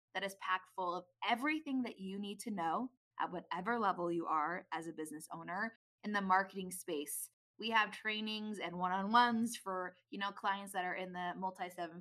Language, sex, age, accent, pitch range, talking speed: English, female, 20-39, American, 180-225 Hz, 190 wpm